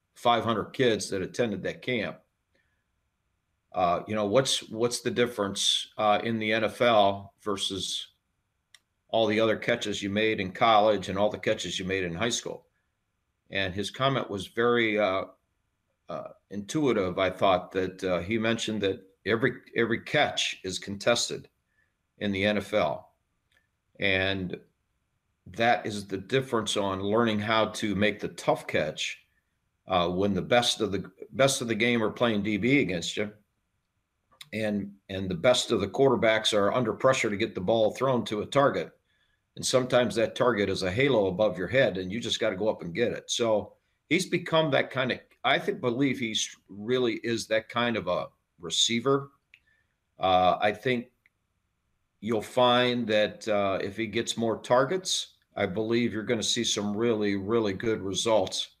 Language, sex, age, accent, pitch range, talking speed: English, male, 50-69, American, 100-120 Hz, 165 wpm